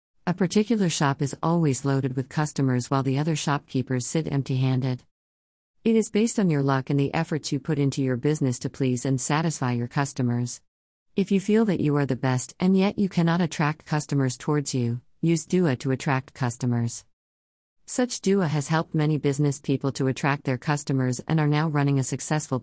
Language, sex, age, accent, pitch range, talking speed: English, female, 50-69, American, 130-155 Hz, 190 wpm